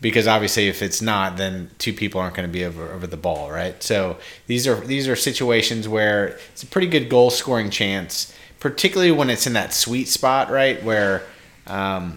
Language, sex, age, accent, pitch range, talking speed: English, male, 30-49, American, 105-125 Hz, 195 wpm